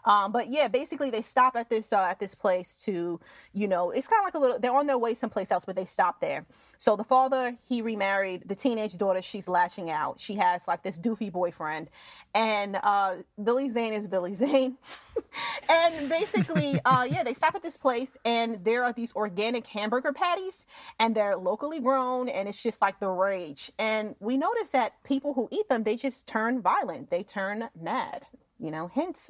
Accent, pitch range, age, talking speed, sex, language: American, 205-270 Hz, 30-49, 205 wpm, female, English